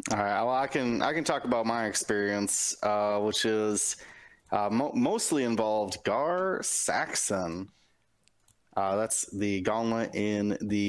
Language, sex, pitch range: English, male, 100-130 Hz